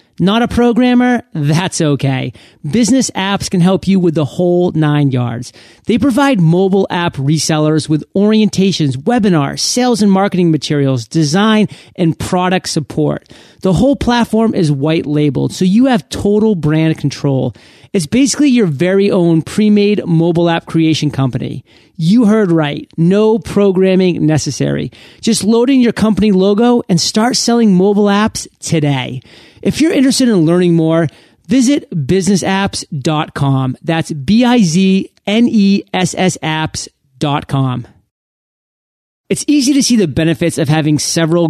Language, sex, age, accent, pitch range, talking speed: English, male, 40-59, American, 150-205 Hz, 130 wpm